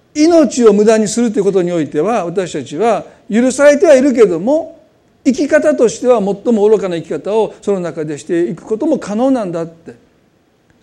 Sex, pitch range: male, 165-260 Hz